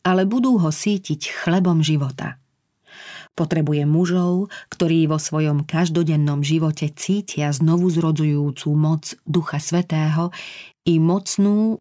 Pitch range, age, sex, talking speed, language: 150-175 Hz, 40-59, female, 100 wpm, Slovak